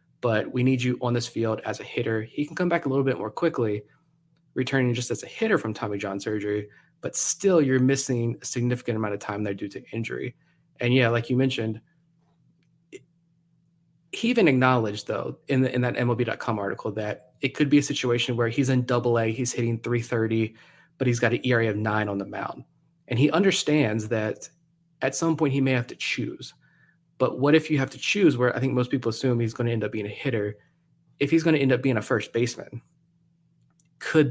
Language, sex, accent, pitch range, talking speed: English, male, American, 115-155 Hz, 220 wpm